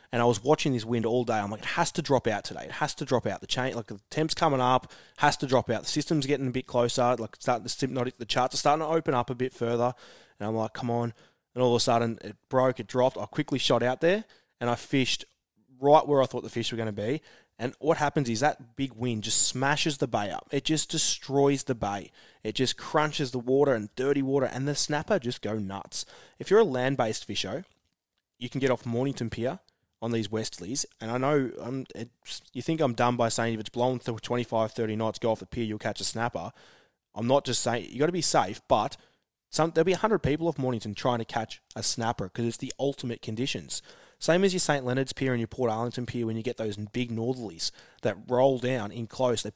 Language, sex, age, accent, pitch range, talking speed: English, male, 20-39, Australian, 115-140 Hz, 250 wpm